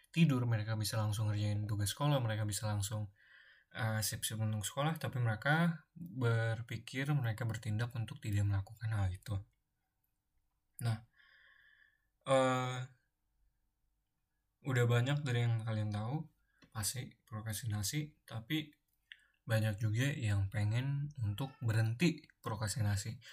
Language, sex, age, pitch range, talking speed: Indonesian, male, 20-39, 110-135 Hz, 110 wpm